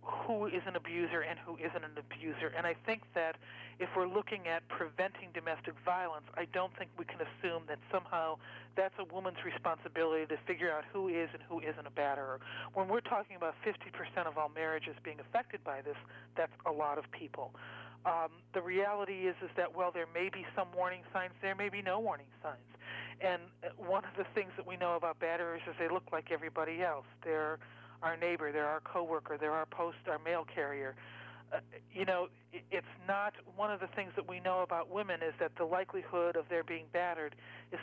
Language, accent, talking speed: English, American, 205 wpm